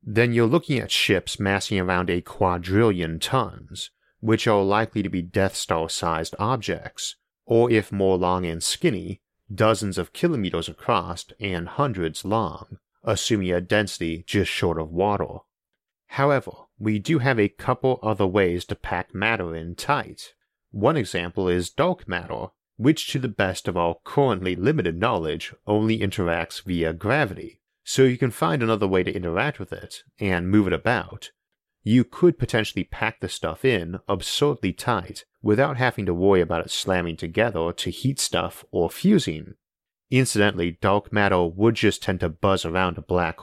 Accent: American